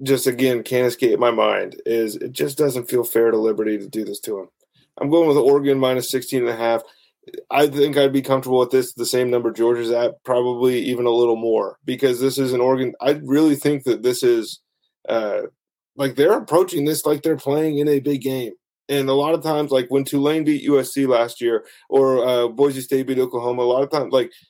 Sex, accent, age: male, American, 20-39